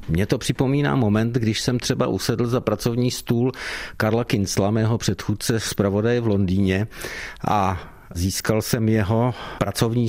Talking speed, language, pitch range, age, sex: 145 wpm, Czech, 105-130 Hz, 50-69, male